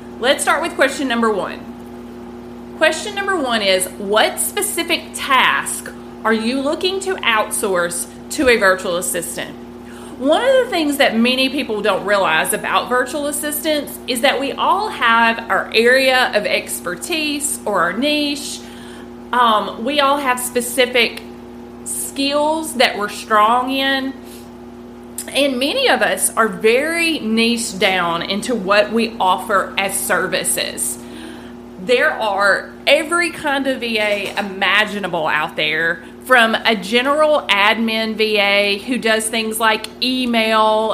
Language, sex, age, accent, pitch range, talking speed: English, female, 30-49, American, 195-270 Hz, 130 wpm